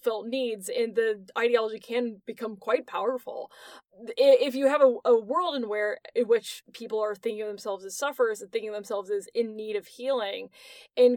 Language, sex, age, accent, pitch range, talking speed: English, female, 20-39, American, 225-320 Hz, 195 wpm